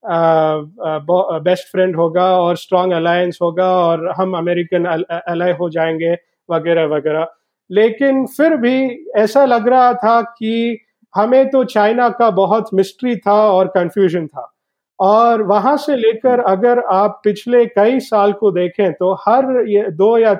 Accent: native